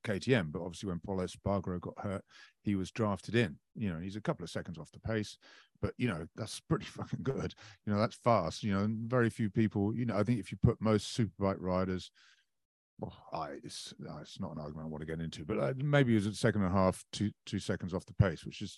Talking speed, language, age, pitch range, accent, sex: 250 wpm, English, 40-59, 95-115 Hz, British, male